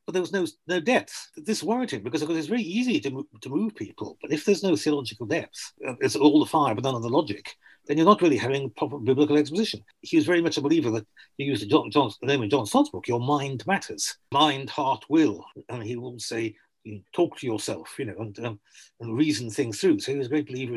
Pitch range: 125-200 Hz